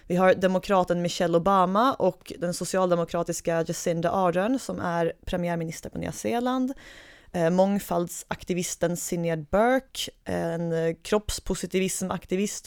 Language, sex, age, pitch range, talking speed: Swedish, female, 20-39, 175-210 Hz, 100 wpm